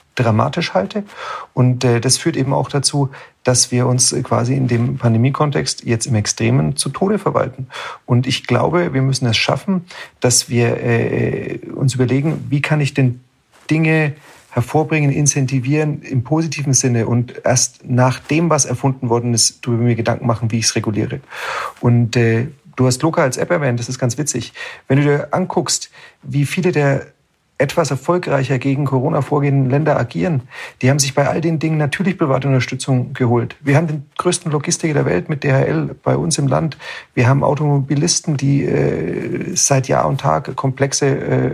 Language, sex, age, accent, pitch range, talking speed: German, male, 40-59, German, 125-150 Hz, 175 wpm